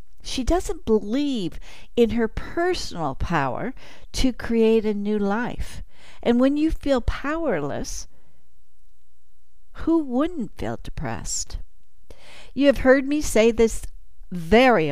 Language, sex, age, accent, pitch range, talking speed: English, female, 60-79, American, 195-260 Hz, 115 wpm